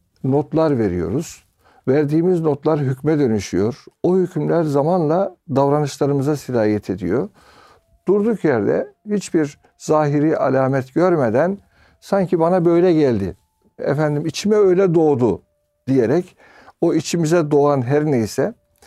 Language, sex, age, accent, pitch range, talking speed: Turkish, male, 60-79, native, 115-165 Hz, 100 wpm